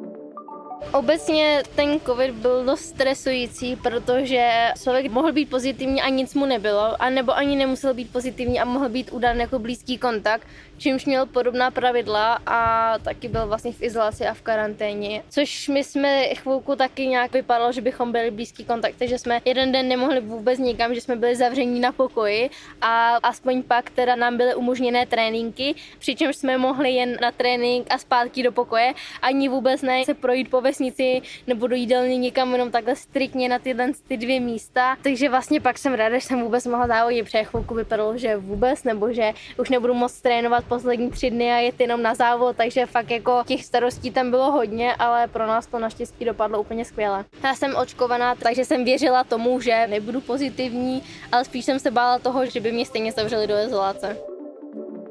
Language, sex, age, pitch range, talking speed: Czech, female, 20-39, 235-260 Hz, 180 wpm